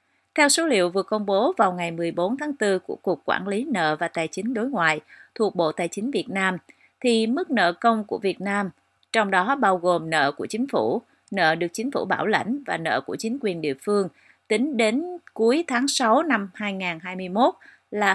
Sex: female